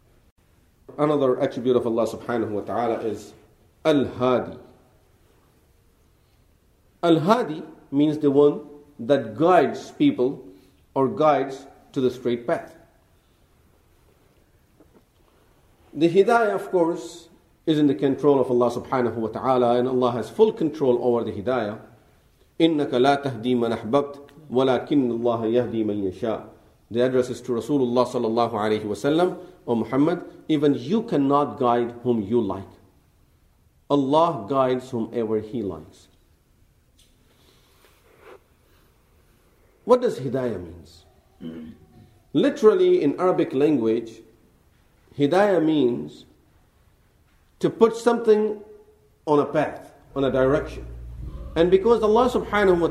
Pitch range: 110-160 Hz